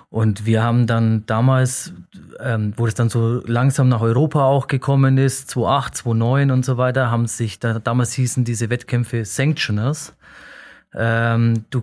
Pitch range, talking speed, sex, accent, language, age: 115-140 Hz, 150 wpm, male, German, German, 30-49